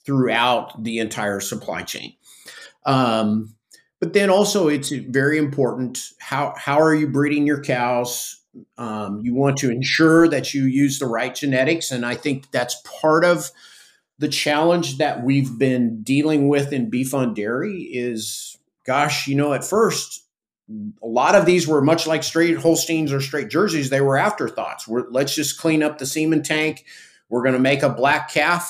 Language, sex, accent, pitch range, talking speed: English, male, American, 120-150 Hz, 170 wpm